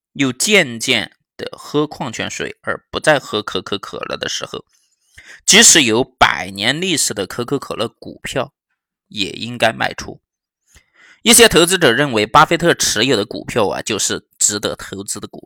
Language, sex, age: Chinese, male, 20-39